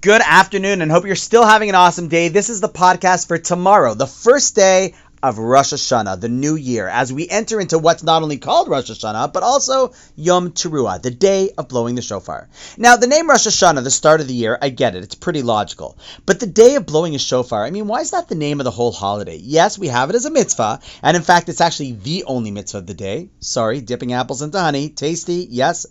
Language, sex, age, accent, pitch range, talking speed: English, male, 30-49, American, 130-205 Hz, 240 wpm